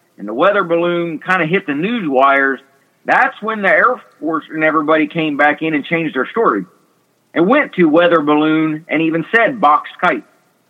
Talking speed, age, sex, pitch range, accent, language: 190 wpm, 50-69, male, 145-200 Hz, American, English